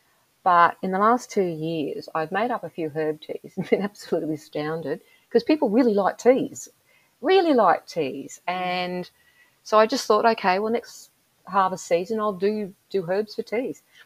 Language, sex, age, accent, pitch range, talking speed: English, female, 40-59, Australian, 155-195 Hz, 175 wpm